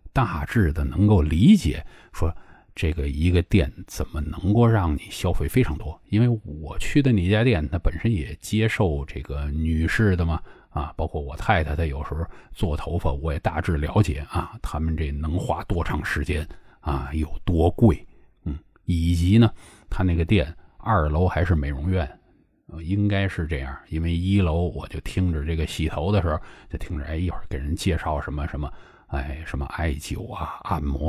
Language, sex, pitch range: Chinese, male, 75-100 Hz